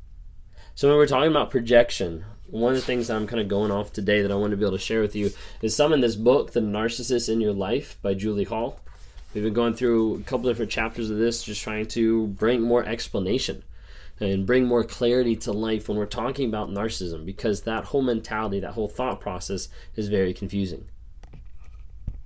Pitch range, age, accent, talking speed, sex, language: 100-130 Hz, 20-39, American, 210 wpm, male, English